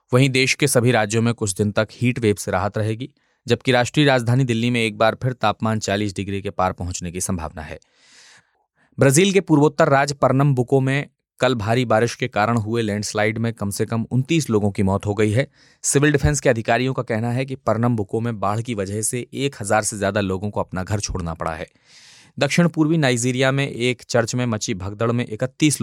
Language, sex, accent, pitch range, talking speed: Hindi, male, native, 105-130 Hz, 210 wpm